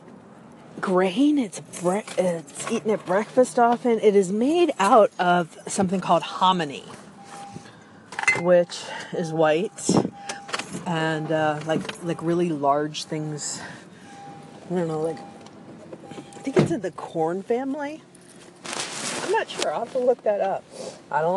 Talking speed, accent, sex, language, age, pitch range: 135 wpm, American, female, English, 40-59, 165-210 Hz